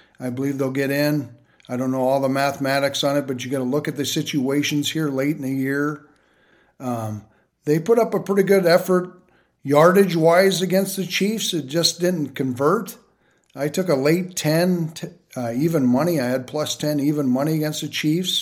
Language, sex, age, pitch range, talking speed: English, male, 50-69, 135-160 Hz, 195 wpm